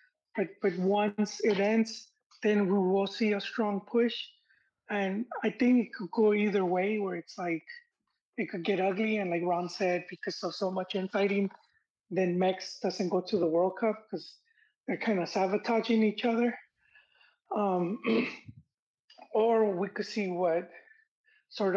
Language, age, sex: English, 20-39, male